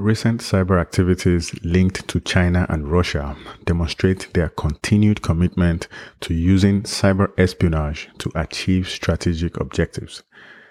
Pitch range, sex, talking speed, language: 85-95 Hz, male, 110 wpm, English